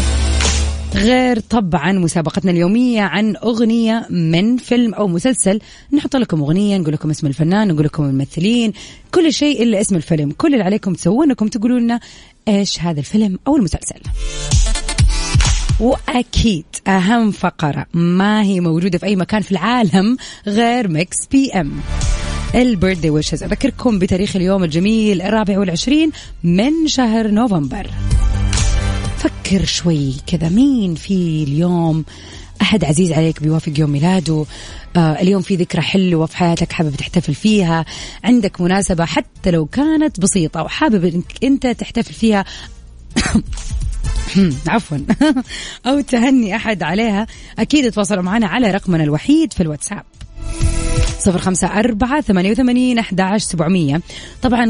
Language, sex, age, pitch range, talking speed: English, female, 30-49, 160-225 Hz, 125 wpm